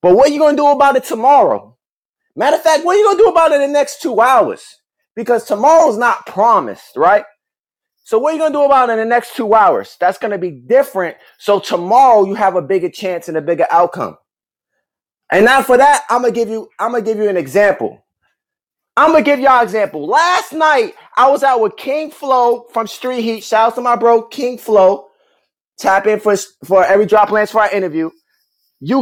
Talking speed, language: 220 wpm, English